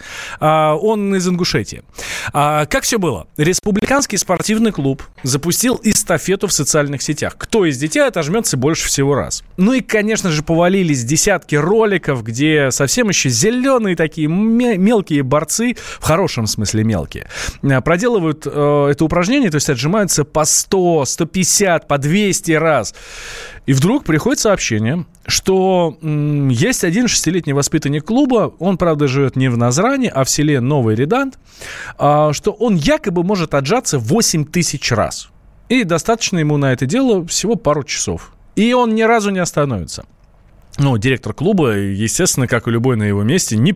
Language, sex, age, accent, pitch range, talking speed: Russian, male, 20-39, native, 140-200 Hz, 145 wpm